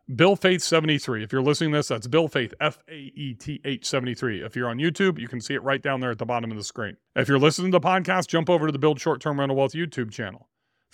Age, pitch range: 40-59, 115-135 Hz